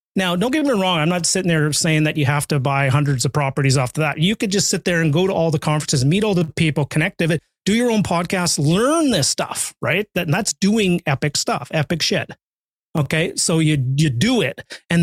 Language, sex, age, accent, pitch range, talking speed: English, male, 30-49, American, 145-175 Hz, 240 wpm